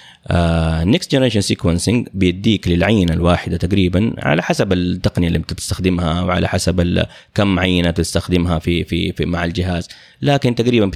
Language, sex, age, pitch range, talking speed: Arabic, male, 30-49, 85-105 Hz, 130 wpm